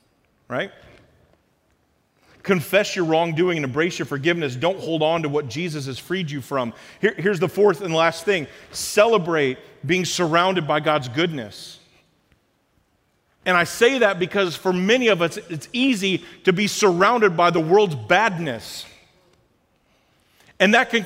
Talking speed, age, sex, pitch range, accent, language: 145 wpm, 40-59, male, 170-235 Hz, American, English